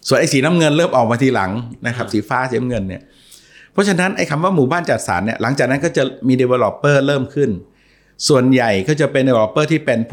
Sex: male